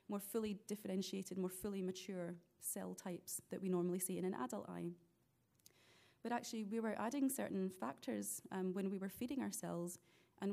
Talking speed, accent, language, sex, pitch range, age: 175 wpm, British, English, female, 180-205 Hz, 30-49